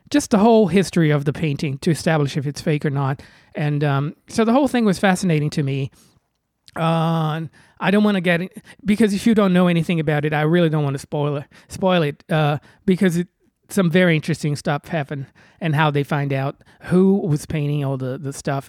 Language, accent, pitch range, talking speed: English, American, 150-200 Hz, 210 wpm